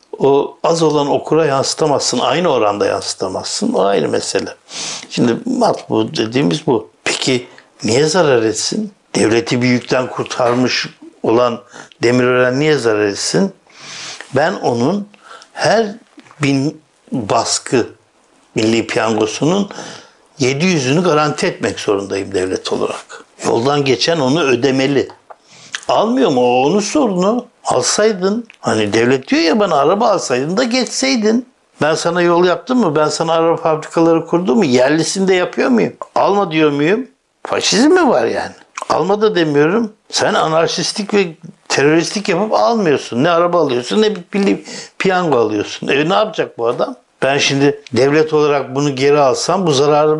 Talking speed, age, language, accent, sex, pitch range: 135 wpm, 60-79, Turkish, native, male, 135-200 Hz